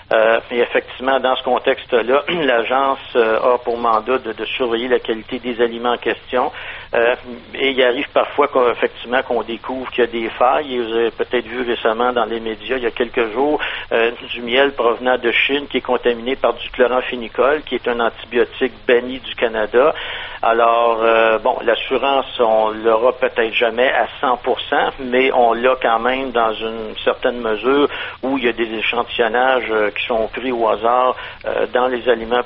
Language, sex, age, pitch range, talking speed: French, male, 50-69, 115-125 Hz, 185 wpm